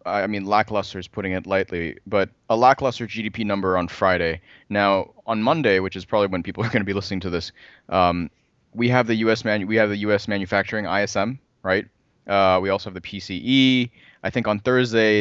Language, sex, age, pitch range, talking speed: English, male, 20-39, 95-115 Hz, 205 wpm